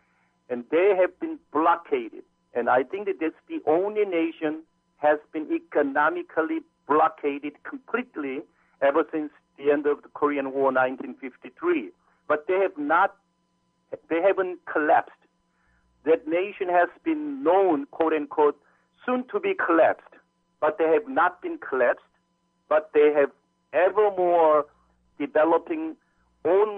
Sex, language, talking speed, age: male, English, 130 wpm, 50-69